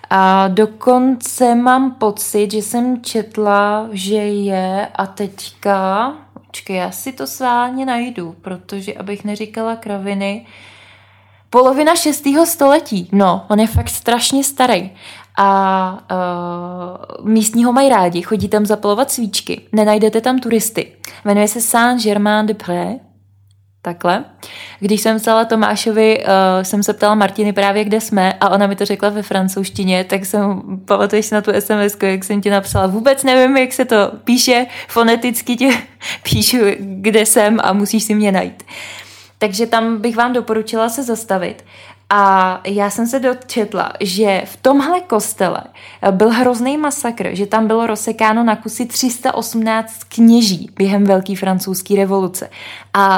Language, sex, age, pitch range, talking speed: Czech, female, 20-39, 190-230 Hz, 145 wpm